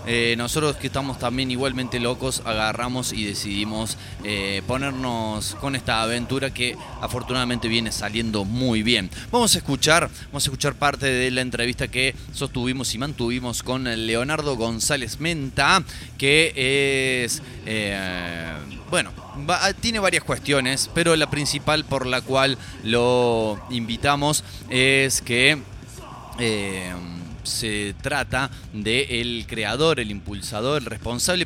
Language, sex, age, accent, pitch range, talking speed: Spanish, male, 20-39, Argentinian, 115-145 Hz, 130 wpm